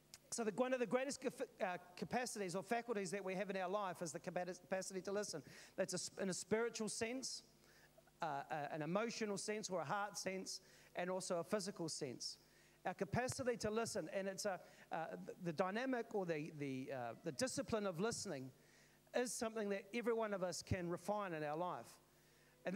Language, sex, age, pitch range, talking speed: English, male, 40-59, 185-230 Hz, 180 wpm